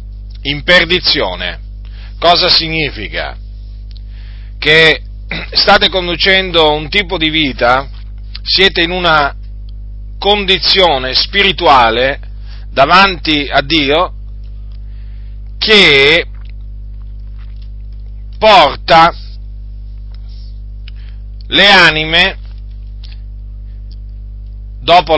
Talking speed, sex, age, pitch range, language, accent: 55 wpm, male, 40-59, 100-165 Hz, Italian, native